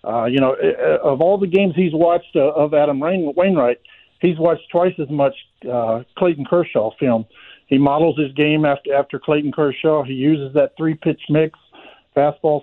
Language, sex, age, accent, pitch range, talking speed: English, male, 50-69, American, 140-170 Hz, 170 wpm